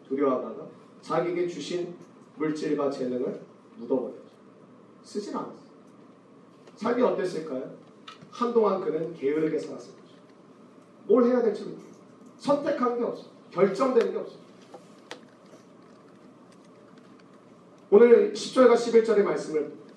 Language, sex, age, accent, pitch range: Korean, male, 40-59, native, 160-230 Hz